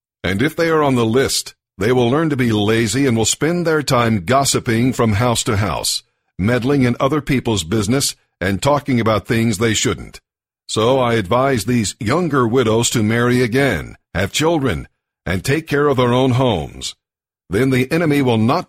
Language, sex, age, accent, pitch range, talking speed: English, male, 60-79, American, 110-135 Hz, 185 wpm